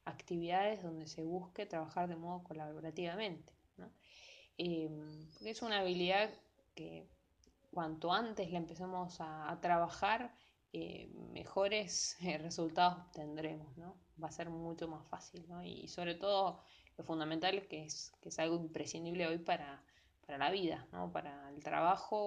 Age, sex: 20-39, female